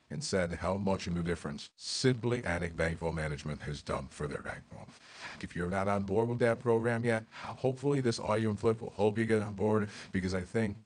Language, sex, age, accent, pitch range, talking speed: English, male, 50-69, American, 85-115 Hz, 215 wpm